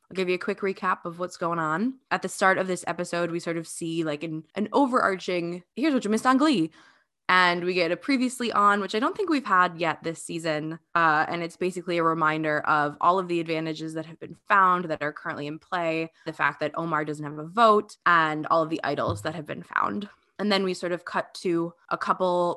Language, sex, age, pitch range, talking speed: English, female, 20-39, 155-185 Hz, 240 wpm